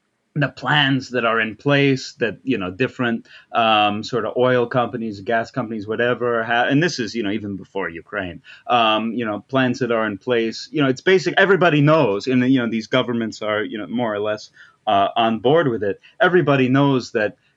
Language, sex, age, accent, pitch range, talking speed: English, male, 30-49, American, 105-130 Hz, 205 wpm